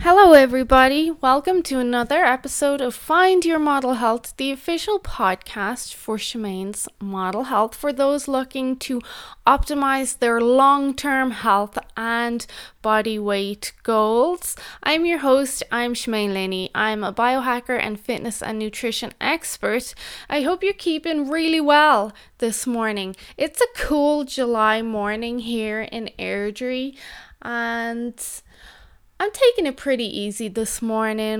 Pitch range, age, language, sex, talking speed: 220-280 Hz, 20-39, English, female, 130 wpm